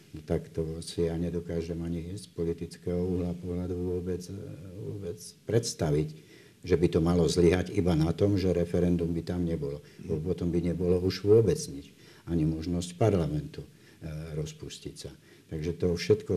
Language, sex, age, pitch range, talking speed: Slovak, male, 60-79, 80-90 Hz, 155 wpm